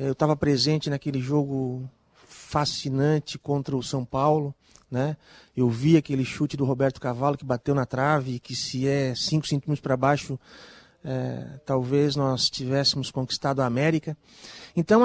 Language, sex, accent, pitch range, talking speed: Portuguese, male, Brazilian, 135-165 Hz, 150 wpm